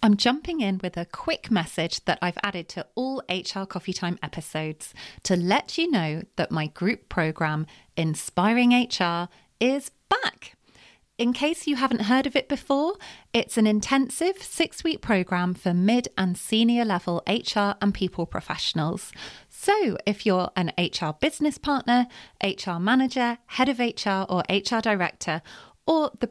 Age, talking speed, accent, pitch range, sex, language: 30-49, 155 wpm, British, 180-240 Hz, female, English